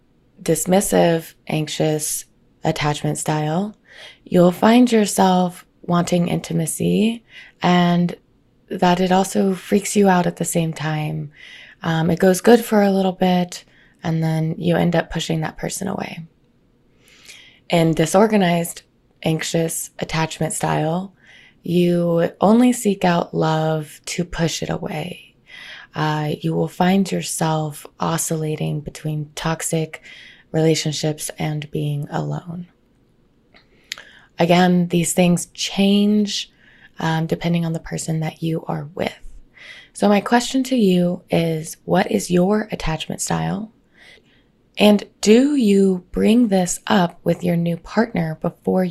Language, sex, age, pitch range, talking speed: English, female, 20-39, 160-190 Hz, 120 wpm